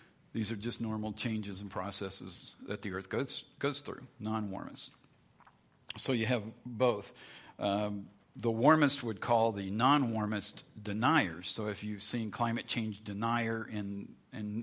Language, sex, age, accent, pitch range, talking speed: English, male, 50-69, American, 105-120 Hz, 145 wpm